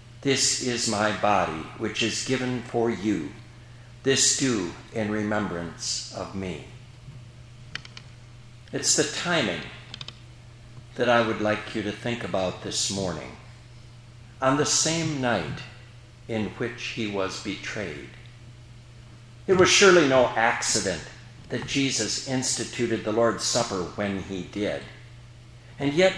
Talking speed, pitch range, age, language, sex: 120 wpm, 120-135 Hz, 60-79, English, male